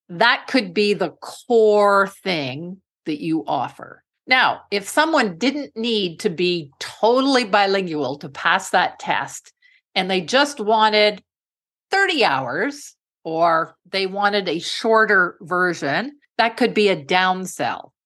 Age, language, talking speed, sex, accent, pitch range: 50-69, English, 130 wpm, female, American, 180-225 Hz